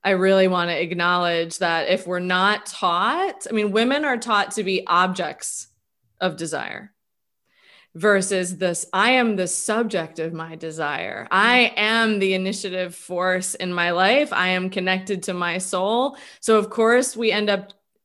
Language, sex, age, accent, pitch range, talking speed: English, female, 20-39, American, 180-220 Hz, 165 wpm